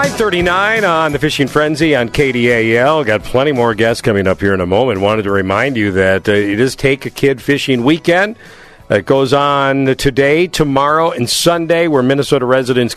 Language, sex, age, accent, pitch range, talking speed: English, male, 50-69, American, 100-135 Hz, 185 wpm